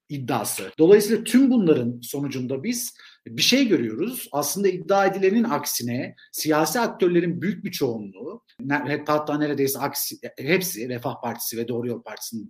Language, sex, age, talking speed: Turkish, male, 50-69, 135 wpm